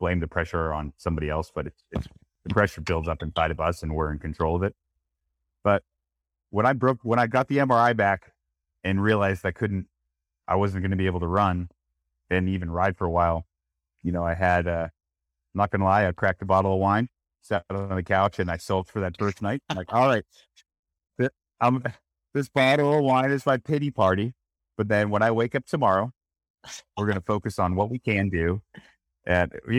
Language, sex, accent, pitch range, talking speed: English, male, American, 80-105 Hz, 220 wpm